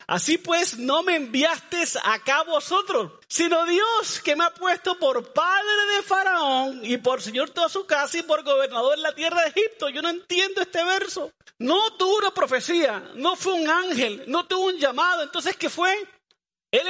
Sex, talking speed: male, 185 wpm